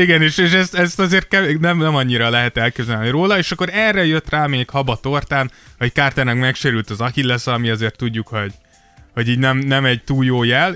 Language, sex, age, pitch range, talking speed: Hungarian, male, 20-39, 115-140 Hz, 205 wpm